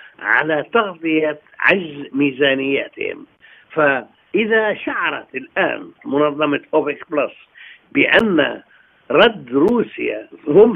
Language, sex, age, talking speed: Arabic, male, 60-79, 80 wpm